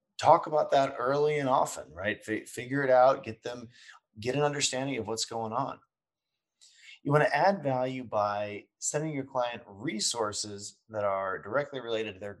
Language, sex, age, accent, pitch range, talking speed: English, male, 30-49, American, 105-145 Hz, 175 wpm